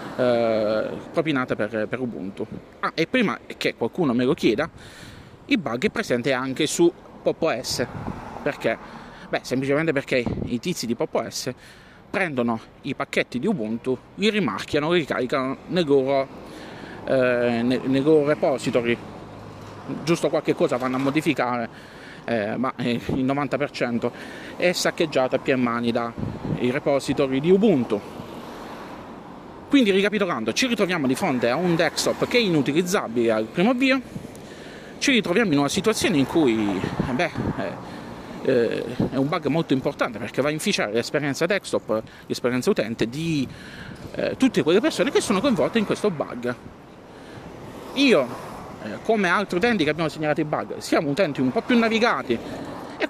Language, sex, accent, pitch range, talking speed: Italian, male, native, 125-180 Hz, 140 wpm